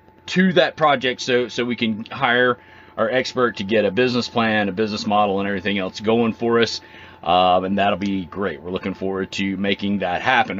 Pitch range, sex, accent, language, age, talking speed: 110-130 Hz, male, American, English, 30-49, 205 wpm